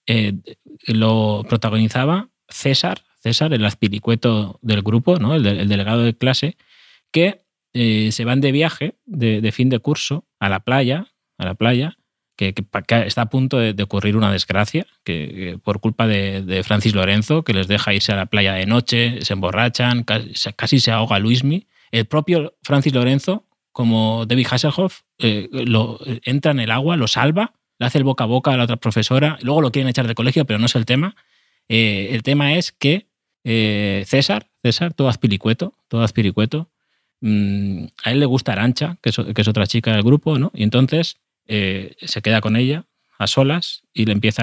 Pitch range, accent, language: 105-135 Hz, Spanish, Spanish